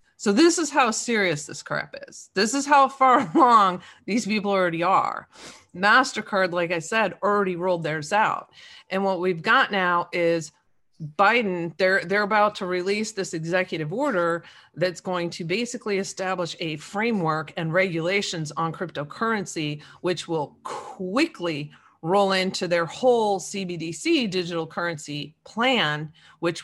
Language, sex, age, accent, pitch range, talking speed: English, female, 40-59, American, 165-205 Hz, 140 wpm